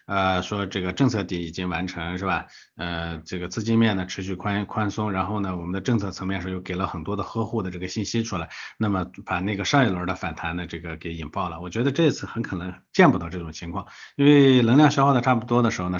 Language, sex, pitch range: Chinese, male, 95-130 Hz